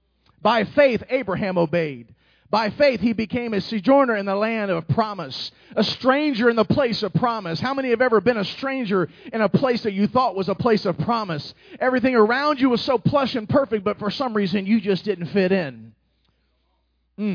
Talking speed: 200 wpm